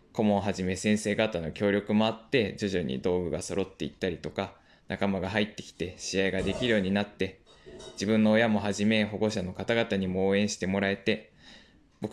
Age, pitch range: 20-39, 95-115 Hz